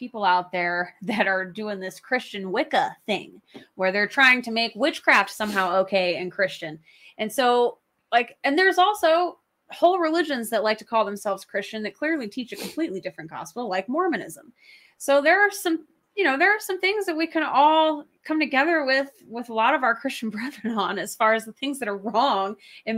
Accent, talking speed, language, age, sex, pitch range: American, 200 wpm, English, 20-39, female, 185-245 Hz